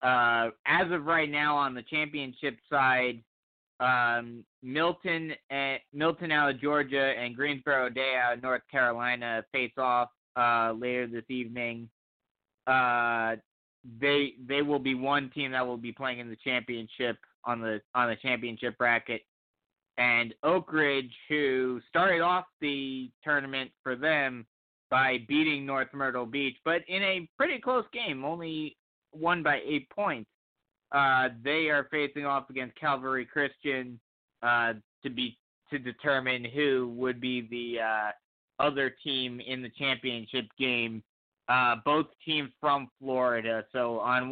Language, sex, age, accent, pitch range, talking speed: English, male, 30-49, American, 120-140 Hz, 145 wpm